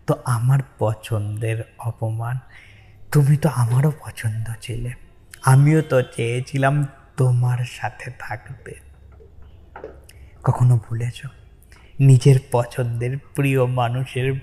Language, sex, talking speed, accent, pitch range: Bengali, male, 85 wpm, native, 110-130 Hz